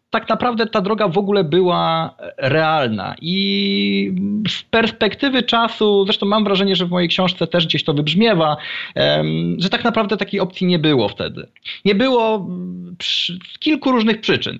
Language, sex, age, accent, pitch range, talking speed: Polish, male, 30-49, native, 130-190 Hz, 150 wpm